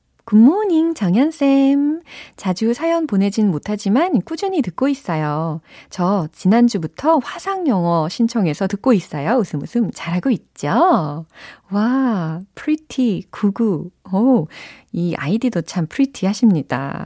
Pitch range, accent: 160-240 Hz, native